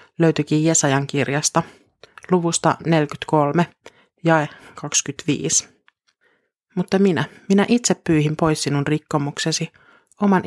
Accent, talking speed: native, 90 wpm